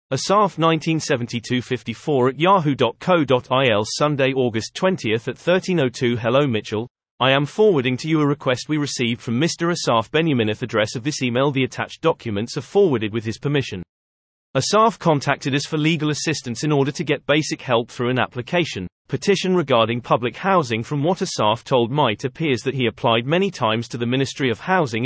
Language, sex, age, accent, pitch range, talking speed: English, male, 30-49, British, 115-160 Hz, 170 wpm